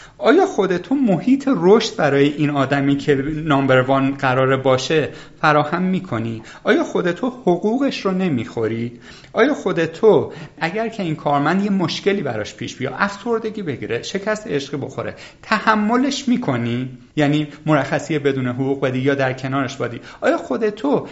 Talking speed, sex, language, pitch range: 135 wpm, male, Persian, 145-225 Hz